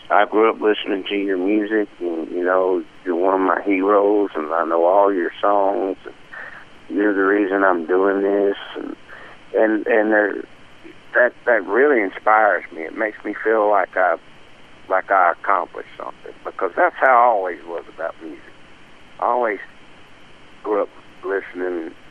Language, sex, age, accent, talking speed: English, male, 60-79, American, 165 wpm